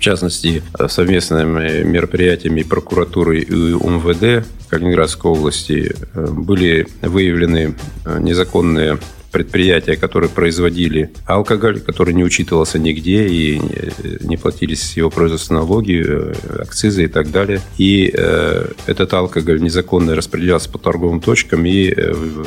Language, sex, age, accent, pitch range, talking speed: Russian, male, 40-59, native, 80-95 Hz, 110 wpm